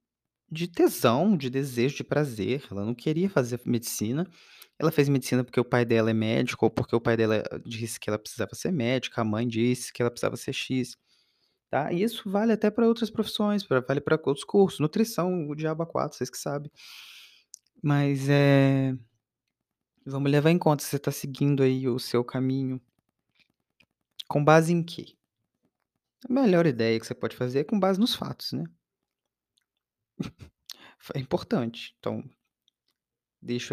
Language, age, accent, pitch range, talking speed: Portuguese, 20-39, Brazilian, 120-155 Hz, 170 wpm